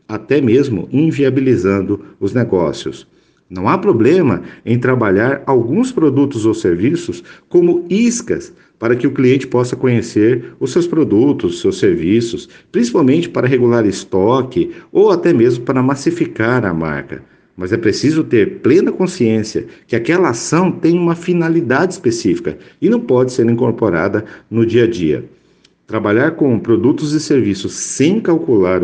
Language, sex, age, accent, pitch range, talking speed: Portuguese, male, 50-69, Brazilian, 110-155 Hz, 140 wpm